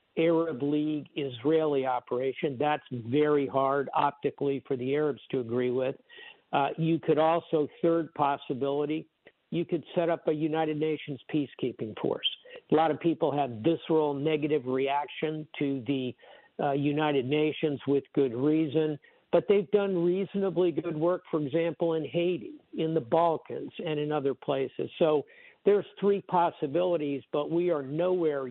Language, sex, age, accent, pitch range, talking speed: English, male, 60-79, American, 140-165 Hz, 145 wpm